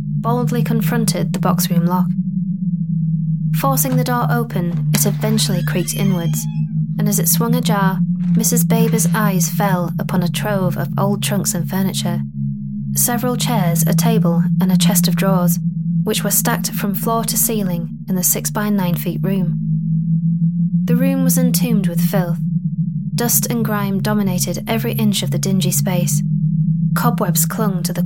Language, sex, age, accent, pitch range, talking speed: English, female, 20-39, British, 165-200 Hz, 150 wpm